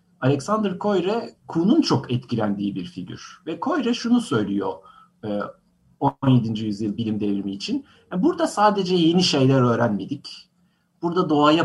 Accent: native